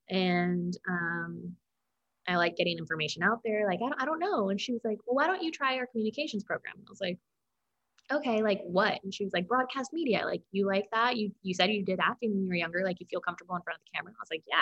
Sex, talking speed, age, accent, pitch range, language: female, 265 wpm, 20-39, American, 180-240 Hz, English